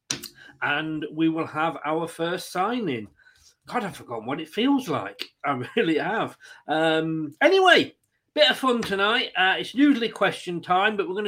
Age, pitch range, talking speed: 40-59, 155-220 Hz, 165 wpm